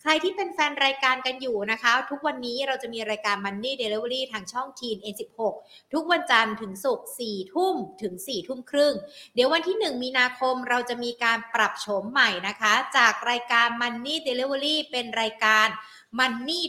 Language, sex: Thai, female